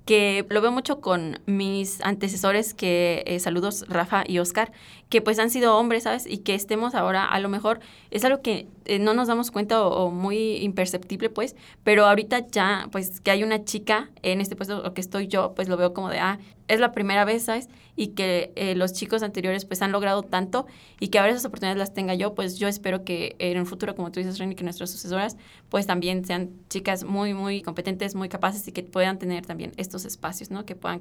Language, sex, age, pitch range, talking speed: Spanish, female, 20-39, 185-215 Hz, 225 wpm